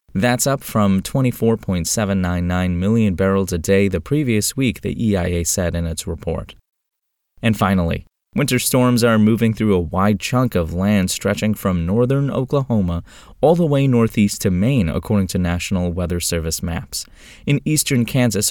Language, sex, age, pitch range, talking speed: English, male, 20-39, 90-120 Hz, 155 wpm